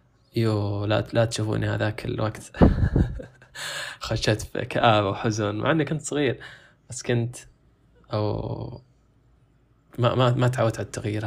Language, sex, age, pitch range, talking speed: Arabic, male, 20-39, 110-125 Hz, 130 wpm